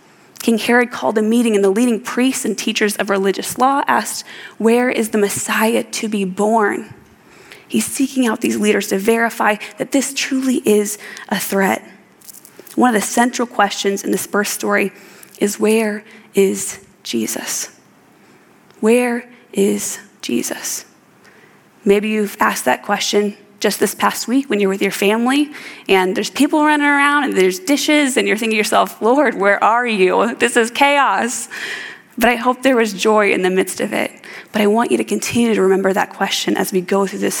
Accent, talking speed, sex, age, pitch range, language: American, 180 wpm, female, 20-39, 200-240 Hz, English